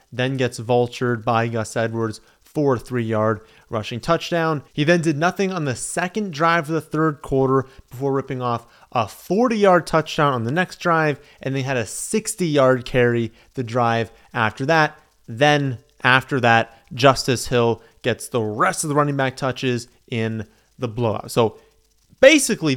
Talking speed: 160 wpm